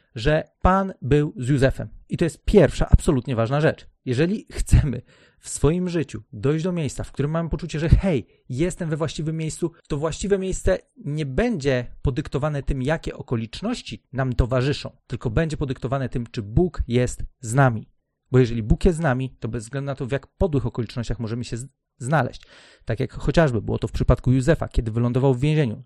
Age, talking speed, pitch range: 40-59, 185 wpm, 120-155 Hz